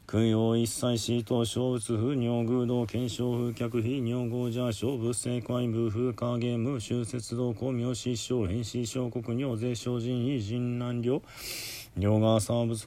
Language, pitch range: Japanese, 115-125 Hz